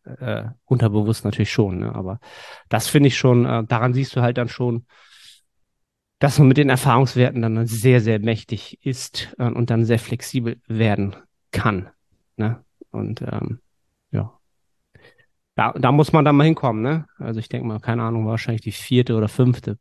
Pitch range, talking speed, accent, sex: 115-135 Hz, 175 wpm, German, male